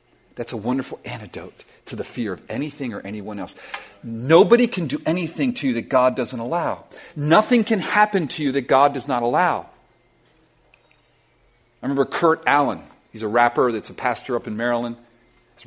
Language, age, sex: English, 40-59, male